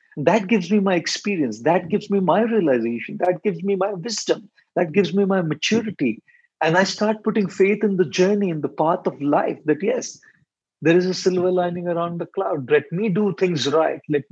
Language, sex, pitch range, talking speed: English, male, 150-200 Hz, 205 wpm